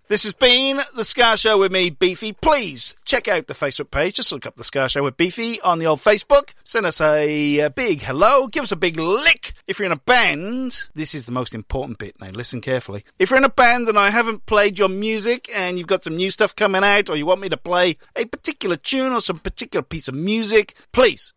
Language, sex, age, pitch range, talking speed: English, male, 40-59, 135-215 Hz, 240 wpm